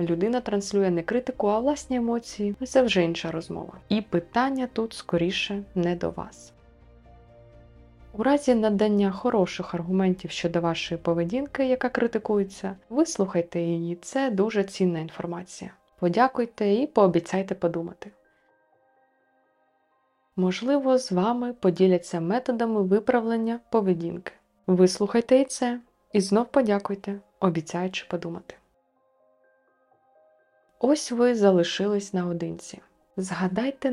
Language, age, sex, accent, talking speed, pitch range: Ukrainian, 20-39, female, native, 105 wpm, 170-225 Hz